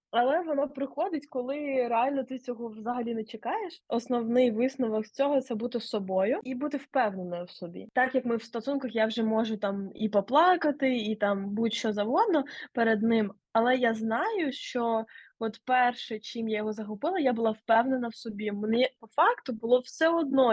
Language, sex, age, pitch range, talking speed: Ukrainian, female, 20-39, 230-285 Hz, 175 wpm